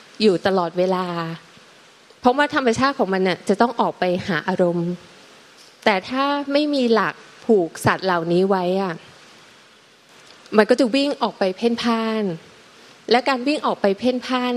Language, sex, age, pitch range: Thai, female, 20-39, 185-235 Hz